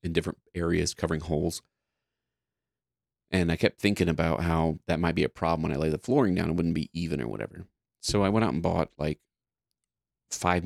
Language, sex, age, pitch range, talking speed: English, male, 30-49, 80-90 Hz, 205 wpm